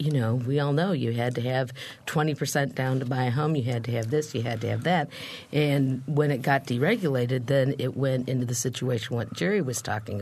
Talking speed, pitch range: 235 wpm, 125-155 Hz